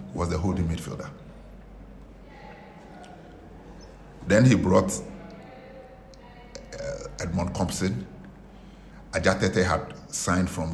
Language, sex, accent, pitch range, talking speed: English, male, Nigerian, 85-95 Hz, 80 wpm